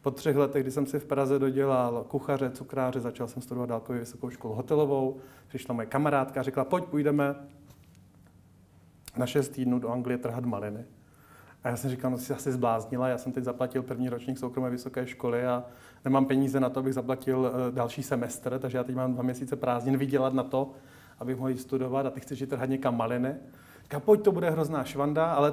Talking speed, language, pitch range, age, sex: 200 wpm, Czech, 125-145 Hz, 30-49, male